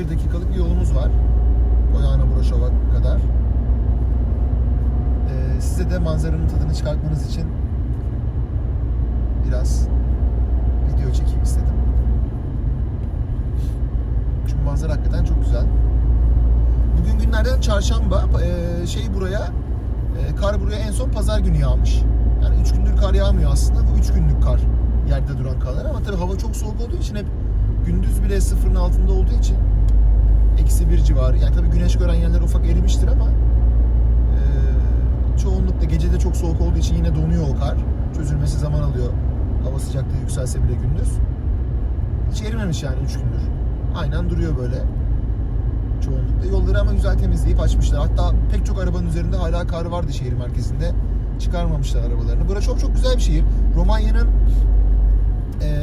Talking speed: 140 wpm